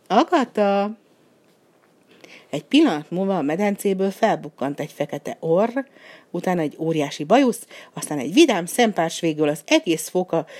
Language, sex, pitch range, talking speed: Hungarian, female, 160-220 Hz, 130 wpm